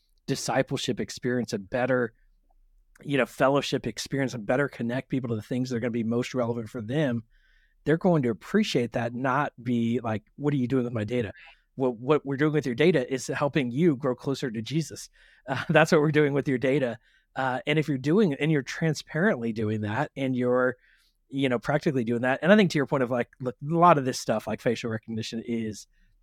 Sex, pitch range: male, 125-155 Hz